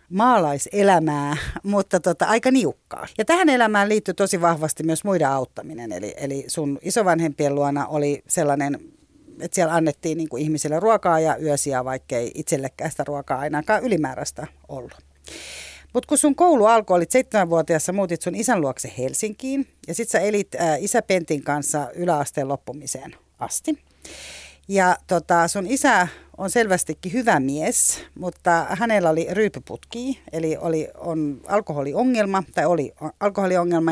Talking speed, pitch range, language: 140 wpm, 155-215 Hz, Finnish